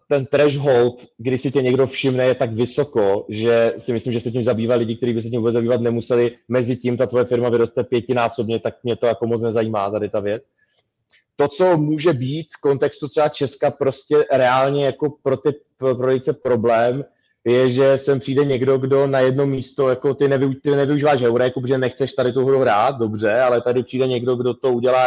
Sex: male